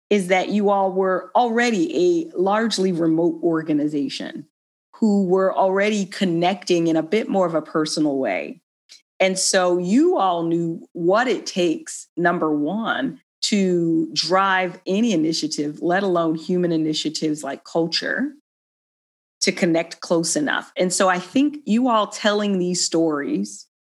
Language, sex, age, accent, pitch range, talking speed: English, female, 40-59, American, 165-205 Hz, 140 wpm